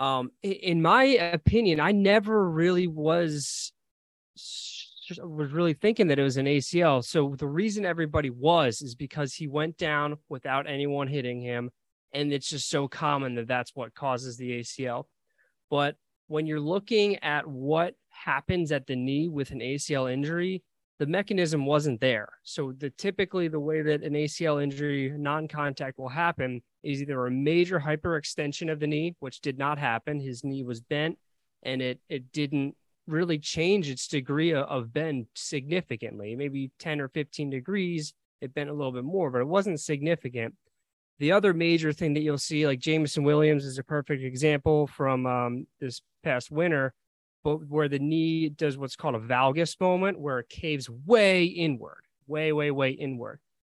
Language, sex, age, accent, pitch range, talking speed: English, male, 20-39, American, 135-165 Hz, 170 wpm